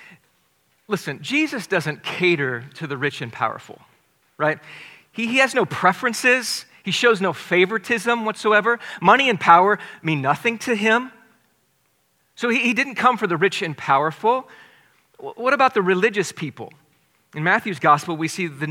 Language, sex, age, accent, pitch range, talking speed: English, male, 40-59, American, 140-200 Hz, 155 wpm